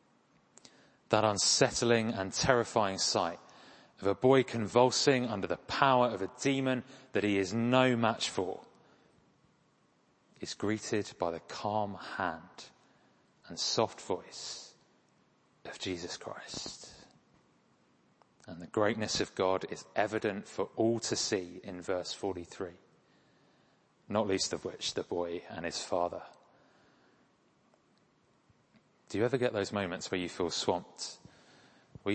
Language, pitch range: English, 100-125 Hz